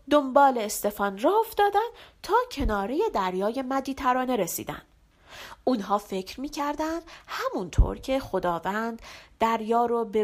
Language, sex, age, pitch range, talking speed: Persian, female, 40-59, 200-335 Hz, 105 wpm